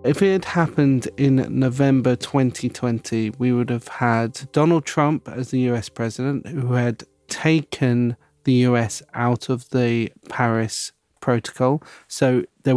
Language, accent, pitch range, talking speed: English, British, 115-135 Hz, 135 wpm